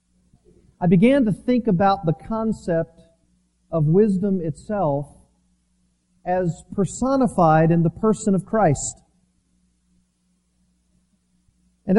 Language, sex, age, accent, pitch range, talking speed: English, male, 40-59, American, 135-205 Hz, 90 wpm